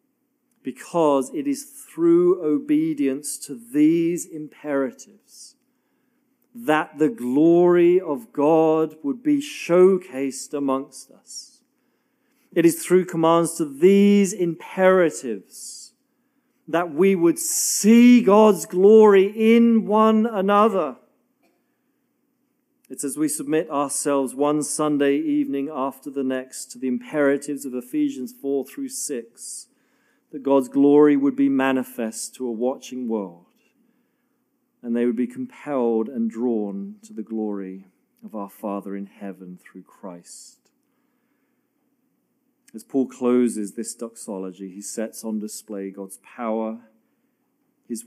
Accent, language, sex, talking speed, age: British, English, male, 115 wpm, 40-59